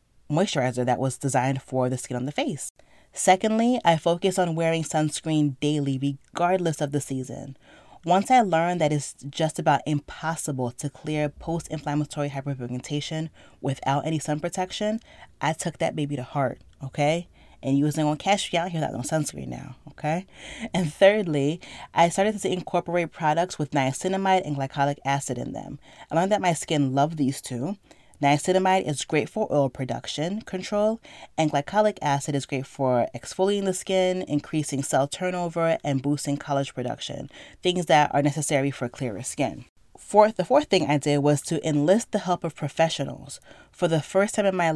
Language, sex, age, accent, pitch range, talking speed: English, female, 30-49, American, 140-175 Hz, 170 wpm